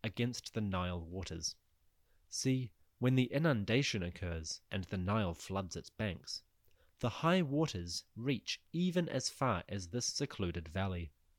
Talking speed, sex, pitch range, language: 135 wpm, male, 85-120 Hz, English